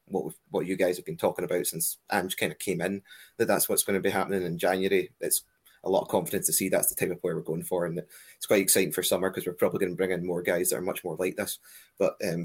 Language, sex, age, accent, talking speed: English, male, 20-39, British, 300 wpm